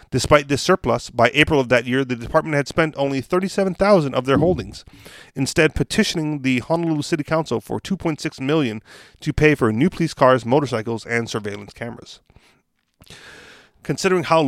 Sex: male